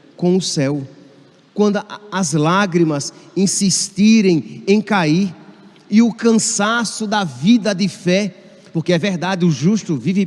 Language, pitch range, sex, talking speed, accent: Portuguese, 160-210 Hz, male, 130 wpm, Brazilian